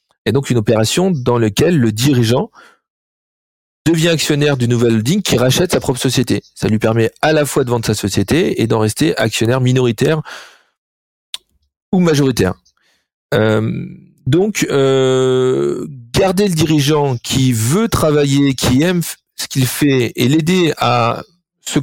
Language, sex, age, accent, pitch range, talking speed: French, male, 40-59, French, 115-155 Hz, 145 wpm